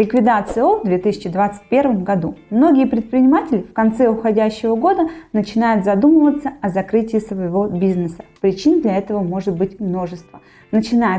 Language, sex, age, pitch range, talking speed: Russian, female, 20-39, 190-250 Hz, 130 wpm